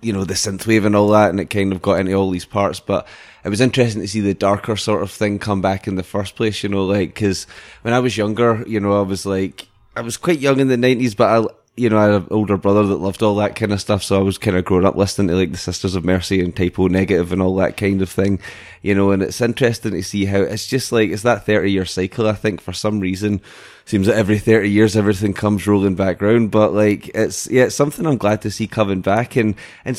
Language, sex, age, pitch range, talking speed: English, male, 20-39, 95-110 Hz, 275 wpm